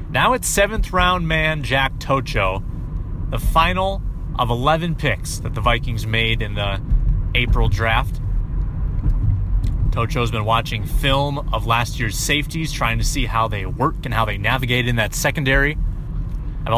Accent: American